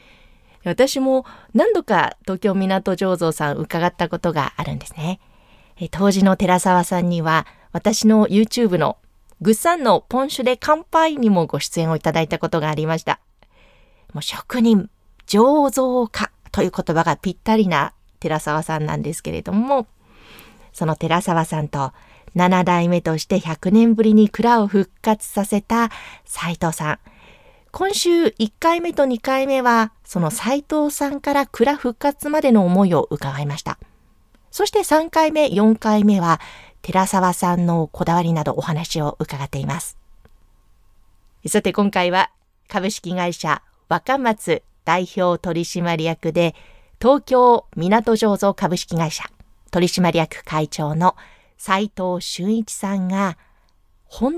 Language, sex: Japanese, female